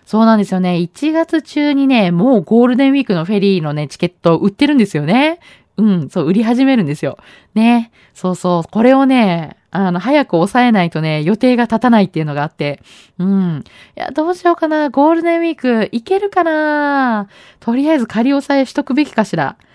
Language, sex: Japanese, female